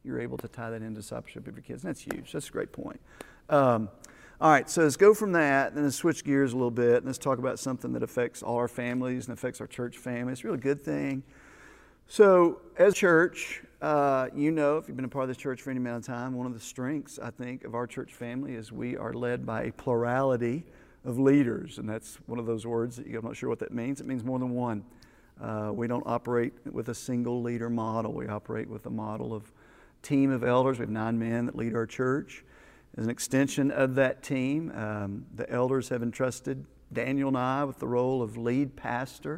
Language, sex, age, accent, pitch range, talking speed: English, male, 50-69, American, 120-140 Hz, 235 wpm